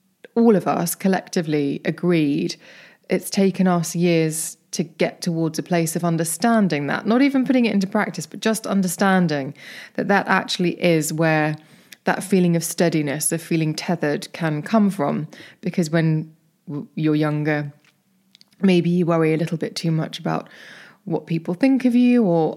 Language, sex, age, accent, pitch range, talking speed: English, female, 20-39, British, 160-200 Hz, 160 wpm